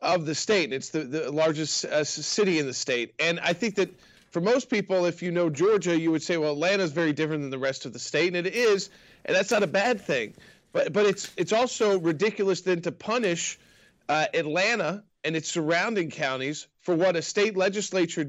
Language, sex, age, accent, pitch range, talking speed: English, male, 40-59, American, 165-205 Hz, 215 wpm